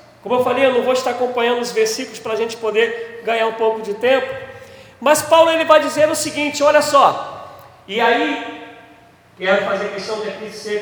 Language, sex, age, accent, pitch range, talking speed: Portuguese, male, 40-59, Brazilian, 200-235 Hz, 205 wpm